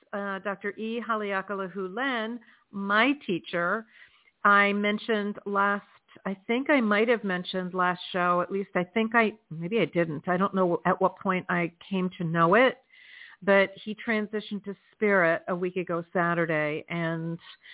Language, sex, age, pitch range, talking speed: English, female, 50-69, 180-225 Hz, 155 wpm